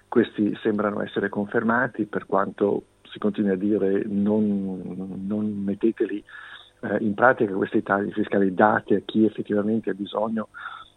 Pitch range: 100-110 Hz